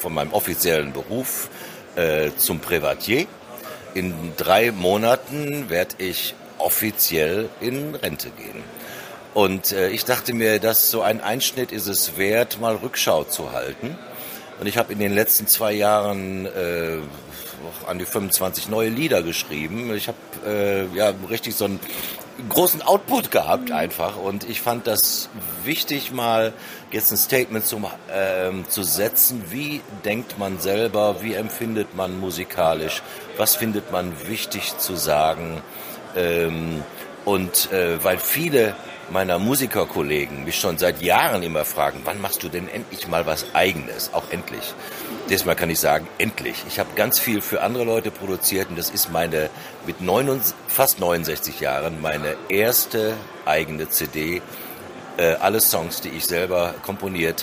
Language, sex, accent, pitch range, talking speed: German, male, German, 85-115 Hz, 150 wpm